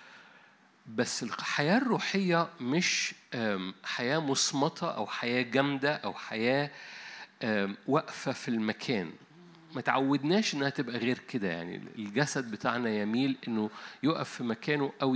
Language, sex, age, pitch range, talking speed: Arabic, male, 50-69, 115-145 Hz, 110 wpm